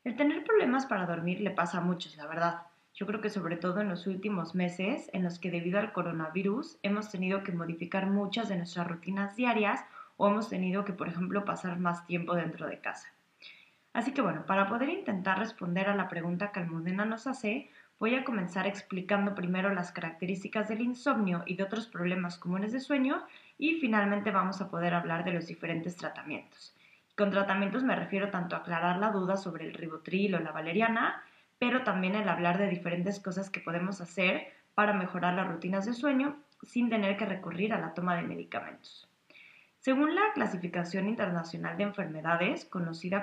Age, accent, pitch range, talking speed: 20-39, Mexican, 180-215 Hz, 185 wpm